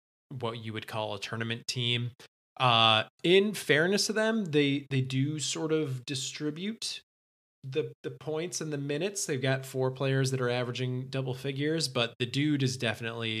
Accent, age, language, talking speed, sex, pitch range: American, 20-39, English, 170 wpm, male, 110-150 Hz